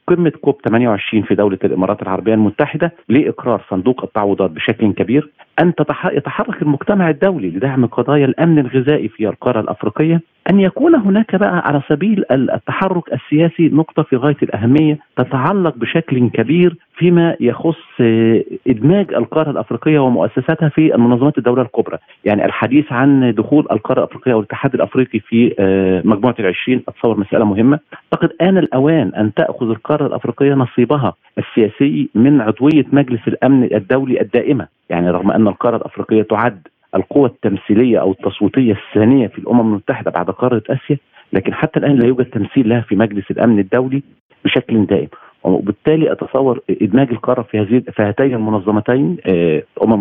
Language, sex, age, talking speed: Arabic, male, 40-59, 140 wpm